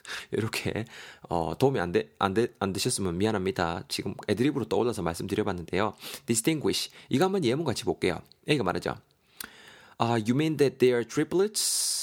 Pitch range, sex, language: 100-140 Hz, male, Korean